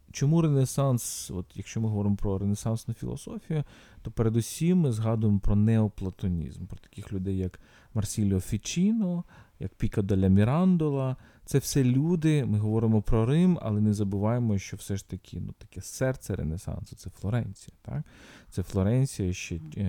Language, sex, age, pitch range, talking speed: Ukrainian, male, 40-59, 95-150 Hz, 150 wpm